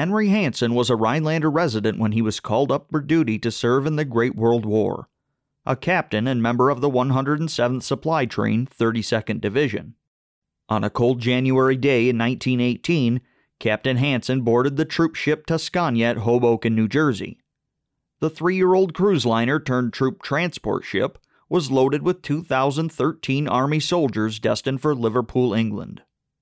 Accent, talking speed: American, 150 wpm